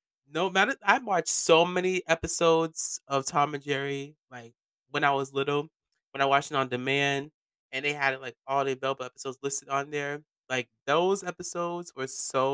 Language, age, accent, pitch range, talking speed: English, 20-39, American, 130-155 Hz, 185 wpm